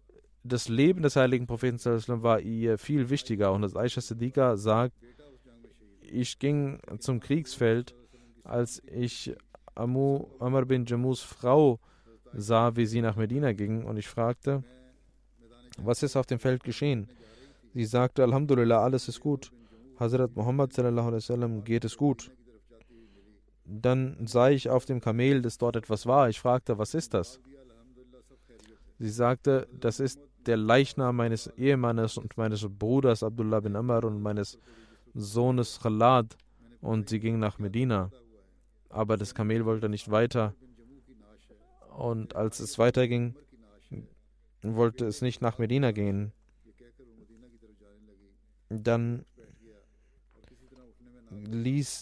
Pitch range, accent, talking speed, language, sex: 110-130 Hz, German, 125 wpm, German, male